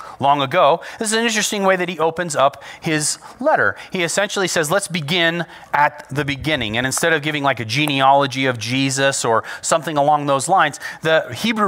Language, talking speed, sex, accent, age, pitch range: English, 190 wpm, male, American, 30-49, 135-175 Hz